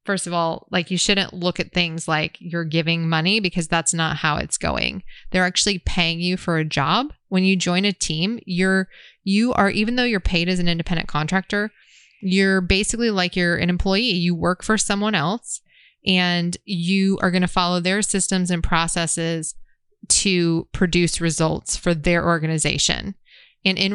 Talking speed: 180 wpm